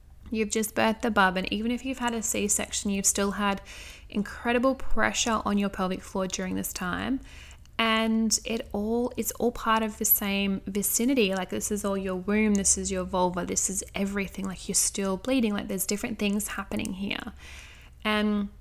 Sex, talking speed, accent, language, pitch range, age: female, 190 wpm, Australian, English, 195-225 Hz, 10-29